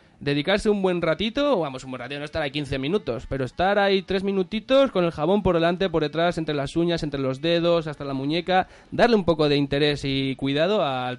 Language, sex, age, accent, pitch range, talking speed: Spanish, male, 20-39, Spanish, 150-215 Hz, 225 wpm